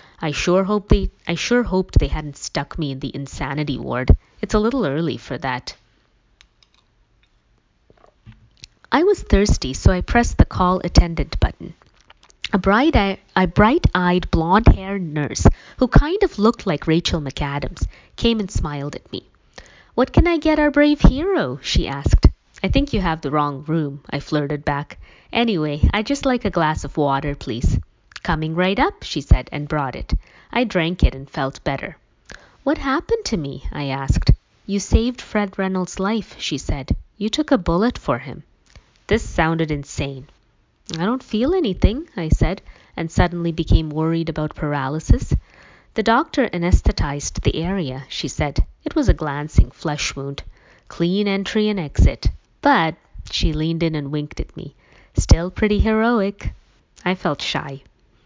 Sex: female